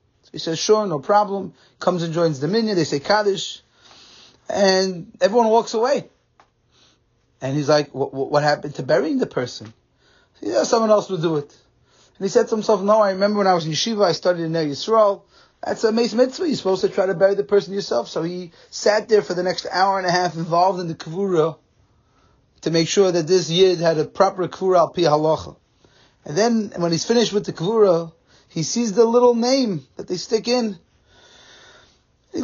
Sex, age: male, 30-49